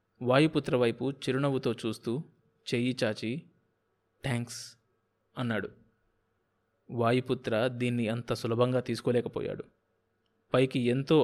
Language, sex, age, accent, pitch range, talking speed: Telugu, male, 20-39, native, 115-135 Hz, 75 wpm